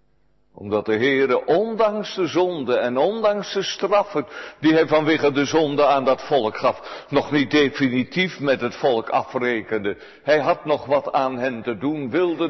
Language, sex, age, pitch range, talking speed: Dutch, male, 60-79, 135-185 Hz, 170 wpm